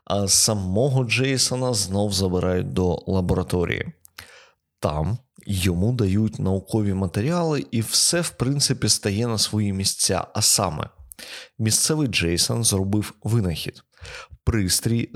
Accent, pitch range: native, 90-115 Hz